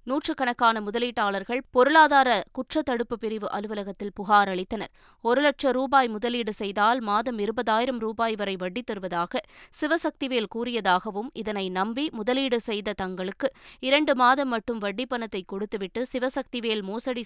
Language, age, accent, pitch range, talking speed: Tamil, 20-39, native, 205-245 Hz, 120 wpm